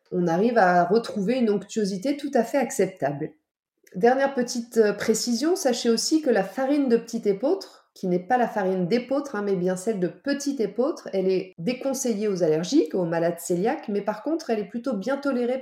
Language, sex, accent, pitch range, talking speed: French, female, French, 185-245 Hz, 190 wpm